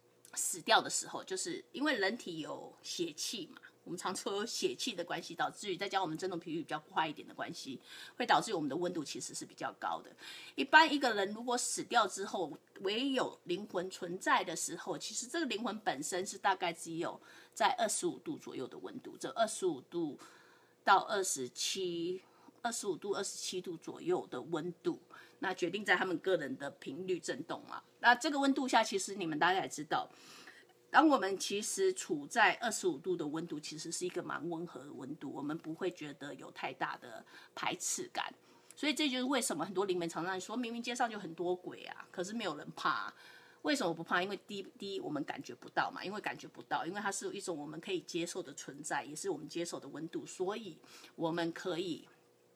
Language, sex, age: English, female, 30-49